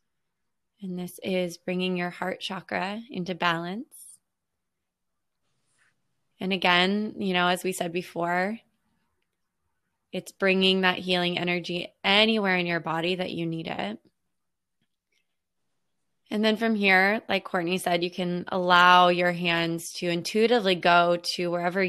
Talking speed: 130 wpm